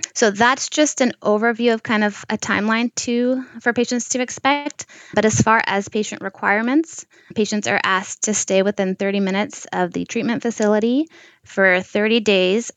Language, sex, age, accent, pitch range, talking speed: English, female, 20-39, American, 170-210 Hz, 170 wpm